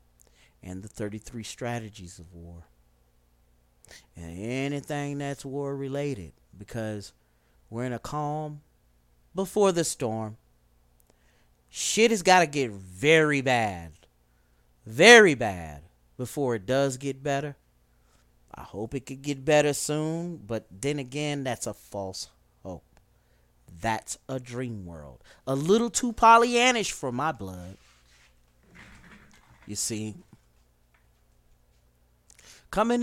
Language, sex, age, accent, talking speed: English, male, 40-59, American, 110 wpm